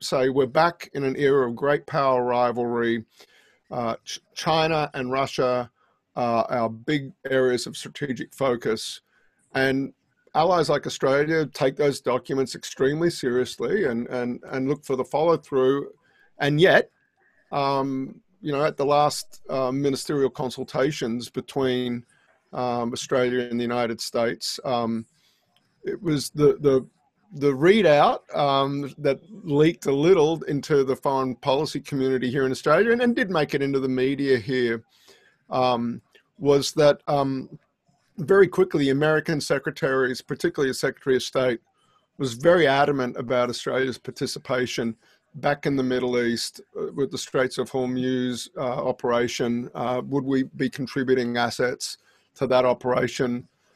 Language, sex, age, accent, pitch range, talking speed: English, male, 50-69, Australian, 125-145 Hz, 140 wpm